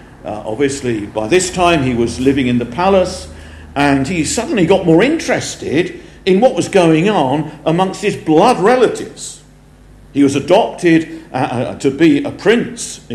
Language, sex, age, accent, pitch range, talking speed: English, male, 50-69, British, 115-160 Hz, 160 wpm